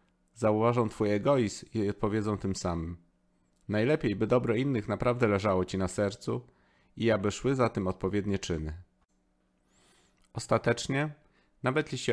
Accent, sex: native, male